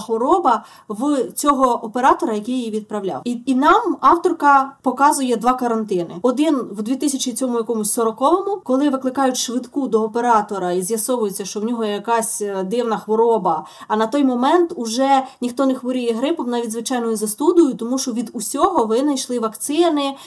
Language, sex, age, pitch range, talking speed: Ukrainian, female, 20-39, 230-280 Hz, 140 wpm